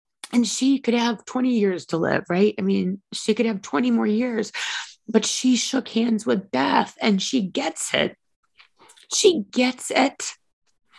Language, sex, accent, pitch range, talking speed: English, female, American, 210-255 Hz, 165 wpm